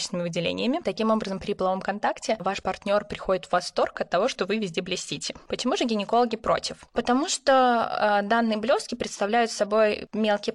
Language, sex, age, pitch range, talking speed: Russian, female, 10-29, 180-230 Hz, 160 wpm